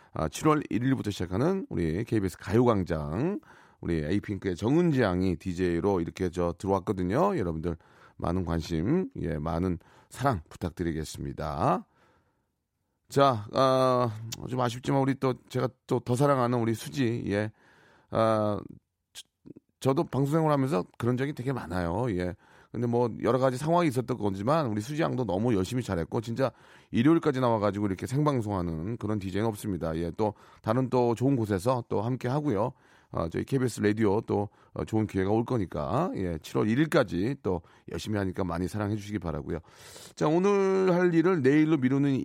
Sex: male